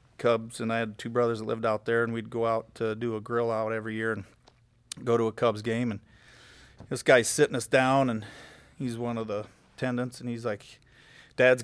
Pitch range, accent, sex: 115-130 Hz, American, male